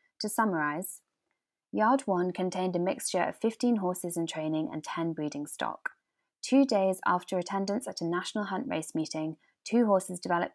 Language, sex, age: English, female, 20-39